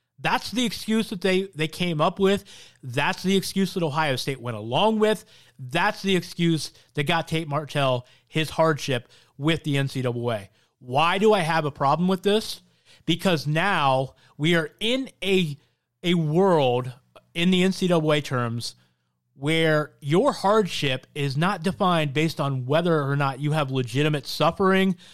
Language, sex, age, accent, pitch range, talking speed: English, male, 30-49, American, 135-185 Hz, 155 wpm